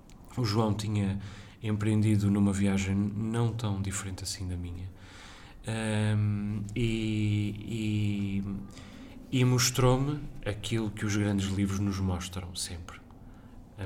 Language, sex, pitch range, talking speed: Portuguese, male, 100-110 Hz, 115 wpm